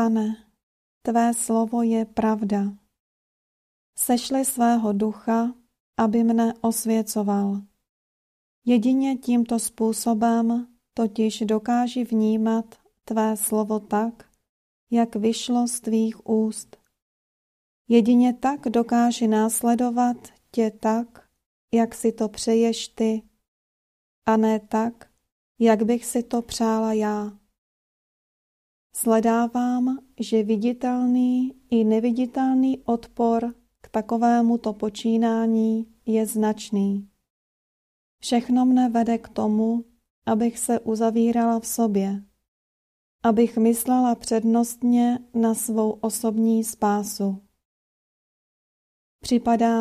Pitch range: 220-240 Hz